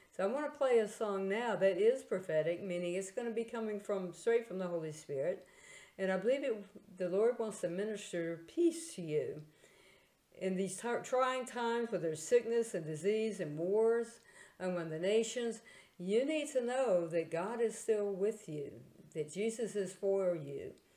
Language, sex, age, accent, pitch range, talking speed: English, female, 50-69, American, 170-225 Hz, 185 wpm